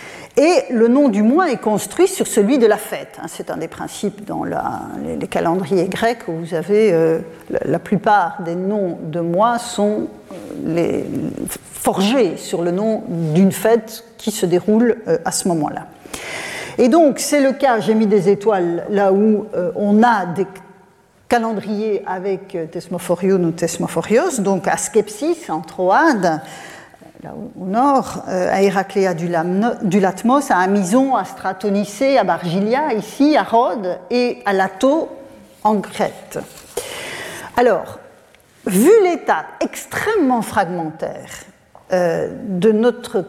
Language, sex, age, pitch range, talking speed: French, female, 50-69, 185-230 Hz, 145 wpm